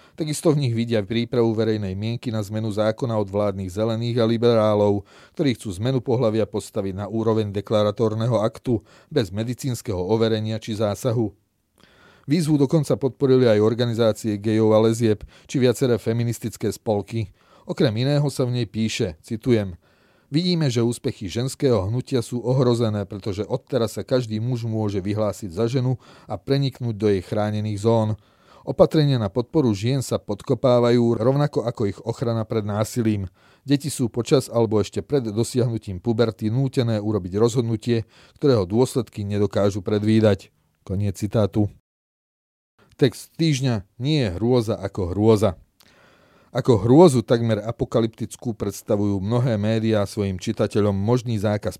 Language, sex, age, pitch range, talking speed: Slovak, male, 30-49, 105-125 Hz, 135 wpm